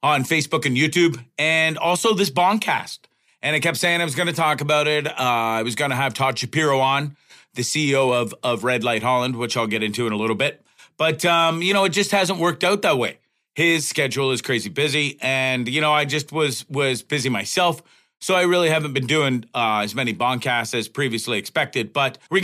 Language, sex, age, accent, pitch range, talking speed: English, male, 40-59, American, 130-160 Hz, 220 wpm